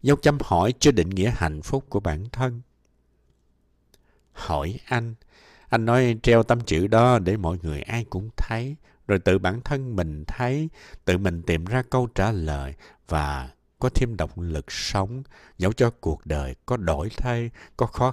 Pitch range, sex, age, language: 80-125 Hz, male, 60-79, Vietnamese